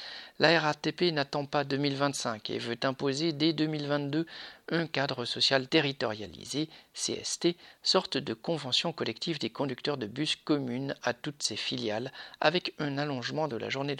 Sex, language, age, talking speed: male, French, 50-69, 145 wpm